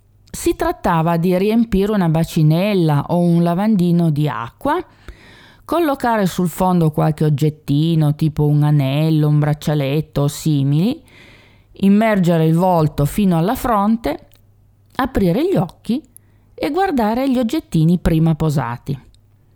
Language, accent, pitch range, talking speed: Italian, native, 150-205 Hz, 115 wpm